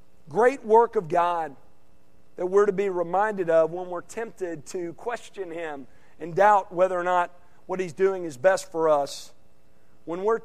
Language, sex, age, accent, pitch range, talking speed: English, male, 50-69, American, 150-230 Hz, 170 wpm